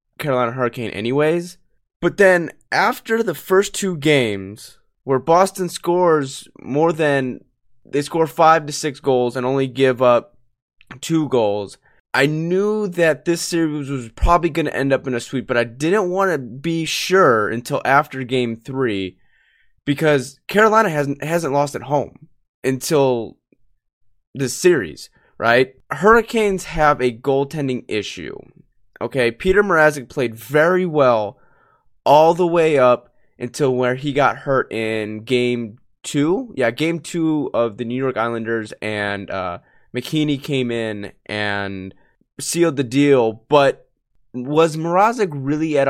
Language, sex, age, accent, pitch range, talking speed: English, male, 20-39, American, 120-165 Hz, 140 wpm